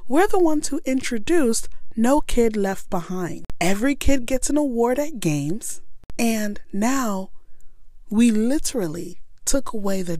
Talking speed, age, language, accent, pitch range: 135 wpm, 30-49, English, American, 160-215 Hz